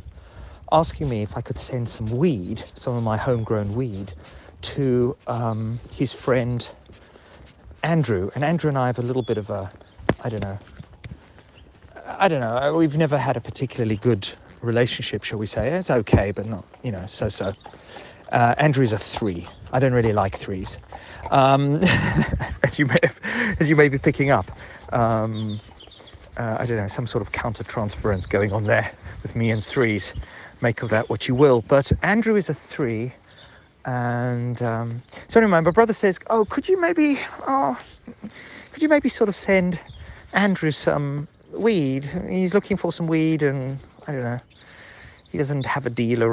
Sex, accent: male, British